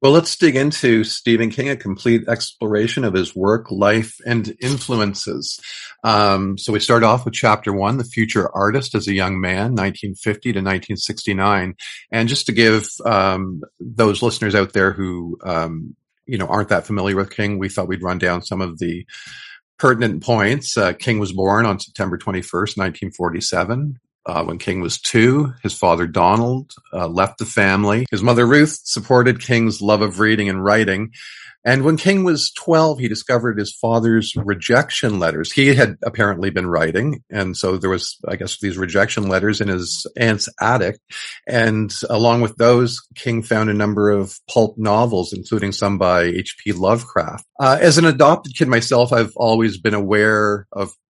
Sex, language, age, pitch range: male, English, 50-69, 100-120 Hz